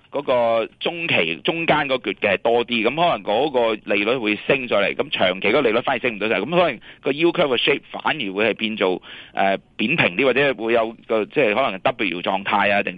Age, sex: 30-49, male